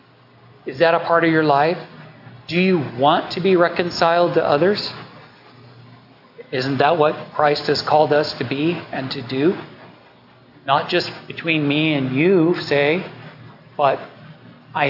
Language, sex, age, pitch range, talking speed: English, male, 40-59, 140-170 Hz, 145 wpm